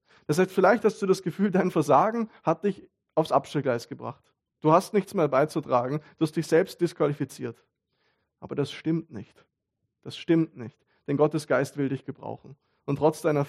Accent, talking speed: German, 180 wpm